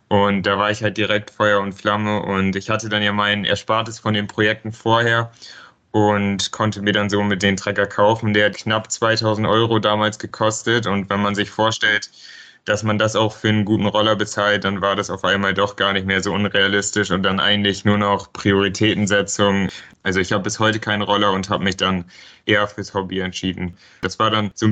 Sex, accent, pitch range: male, German, 100-110 Hz